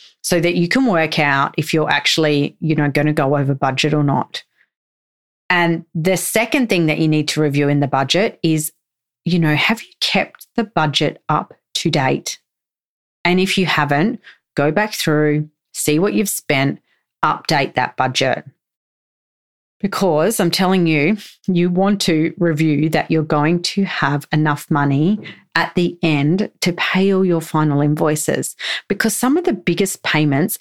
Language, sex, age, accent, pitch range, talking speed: English, female, 40-59, Australian, 150-185 Hz, 165 wpm